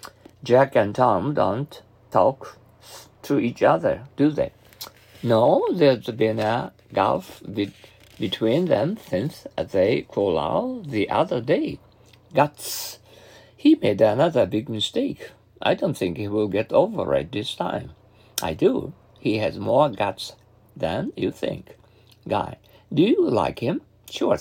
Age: 50-69